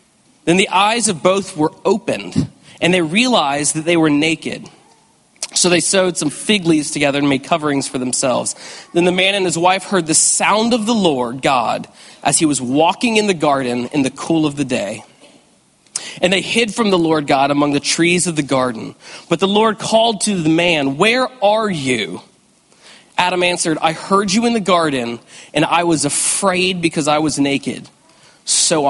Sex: male